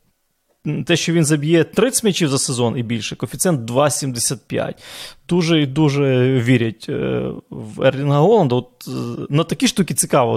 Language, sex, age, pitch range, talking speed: Ukrainian, male, 20-39, 120-150 Hz, 135 wpm